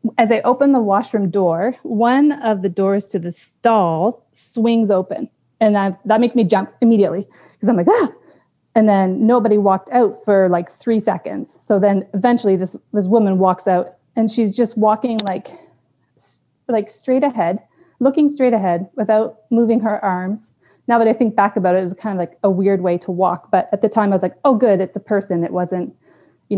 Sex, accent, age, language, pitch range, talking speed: female, American, 30-49, English, 195-240 Hz, 205 wpm